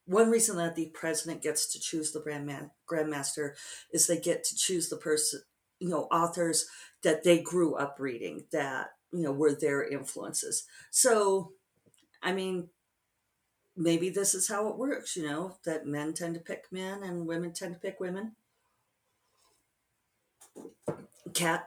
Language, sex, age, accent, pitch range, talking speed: English, female, 50-69, American, 155-185 Hz, 160 wpm